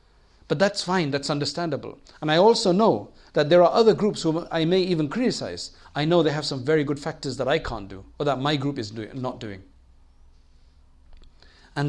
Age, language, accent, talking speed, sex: 50-69, English, South African, 195 wpm, male